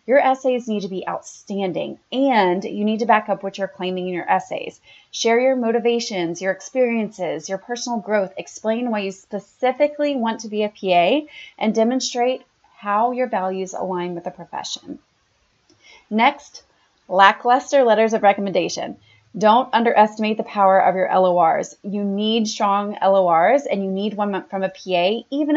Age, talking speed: 30-49, 160 wpm